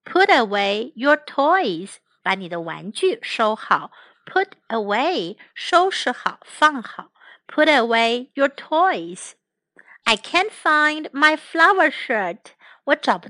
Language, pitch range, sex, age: Chinese, 225-330 Hz, female, 60-79